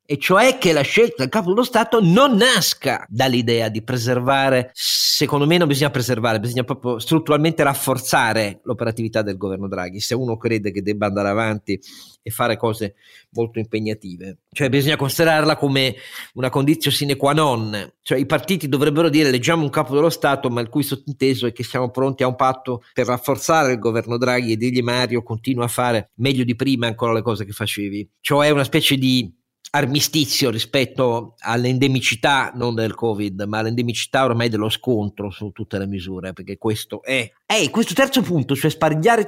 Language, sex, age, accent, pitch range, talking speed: Italian, male, 40-59, native, 110-150 Hz, 175 wpm